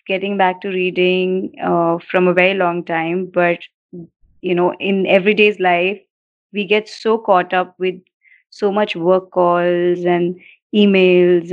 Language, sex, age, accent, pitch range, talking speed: Hindi, female, 30-49, native, 180-210 Hz, 145 wpm